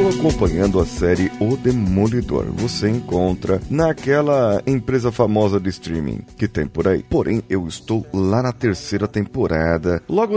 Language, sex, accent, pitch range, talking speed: Portuguese, male, Brazilian, 90-125 Hz, 140 wpm